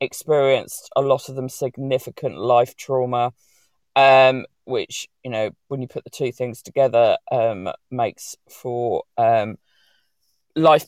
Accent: British